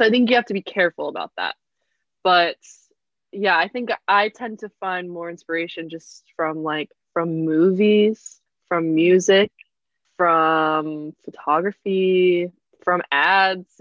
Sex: female